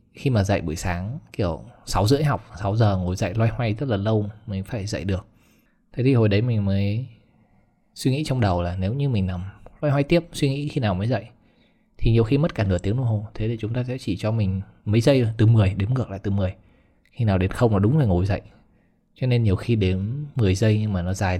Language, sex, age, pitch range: Vietnamese, male, 20-39, 100-120 Hz